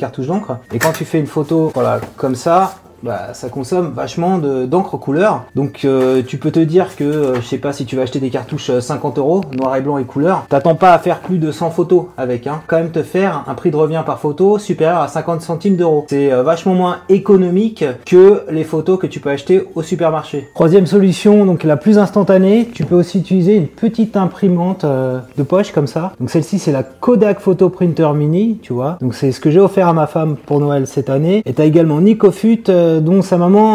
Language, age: French, 30-49